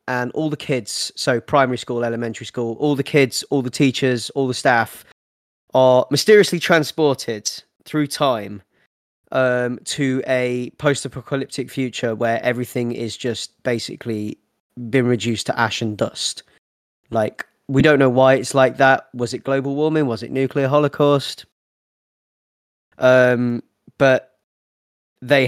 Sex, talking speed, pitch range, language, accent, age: male, 135 wpm, 115-130 Hz, English, British, 20-39